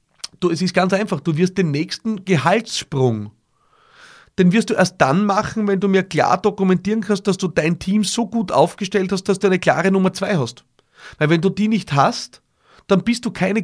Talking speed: 200 wpm